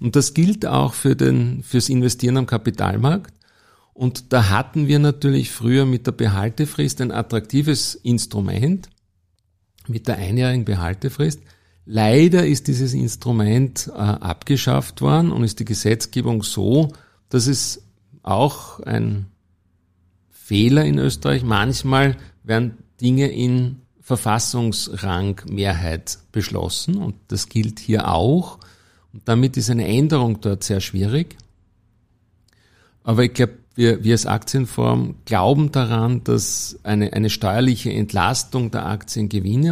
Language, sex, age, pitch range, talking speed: German, male, 50-69, 100-130 Hz, 120 wpm